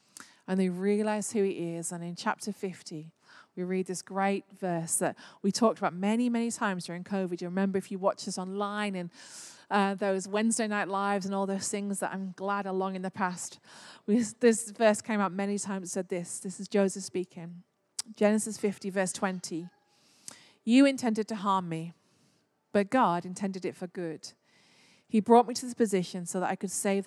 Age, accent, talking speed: 30-49, British, 195 wpm